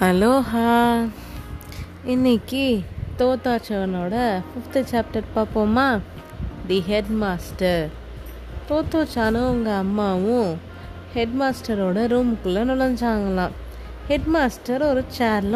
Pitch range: 195-255 Hz